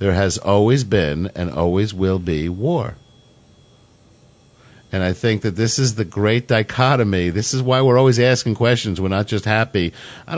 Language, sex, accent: English, male, American